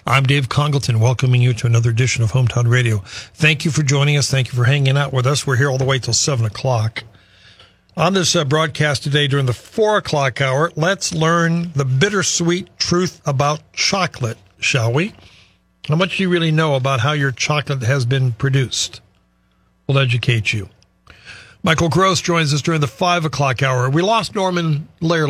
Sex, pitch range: male, 125-155 Hz